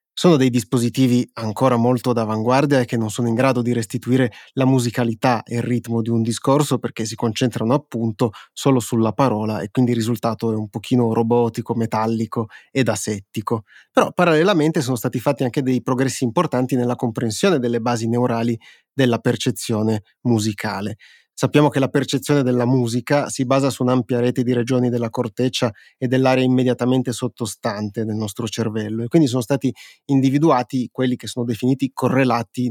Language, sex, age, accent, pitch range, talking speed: Italian, male, 30-49, native, 115-130 Hz, 165 wpm